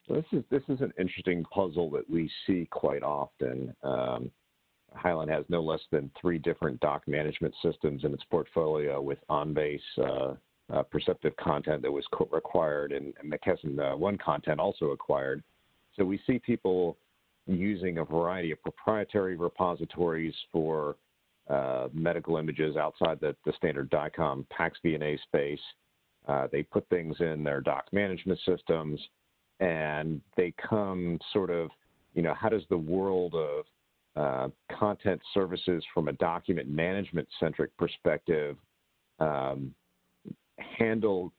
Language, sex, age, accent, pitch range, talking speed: English, male, 50-69, American, 75-95 Hz, 140 wpm